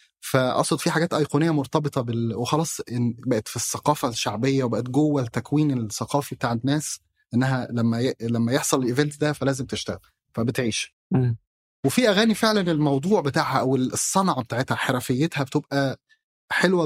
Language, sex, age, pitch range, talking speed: Arabic, male, 30-49, 120-150 Hz, 130 wpm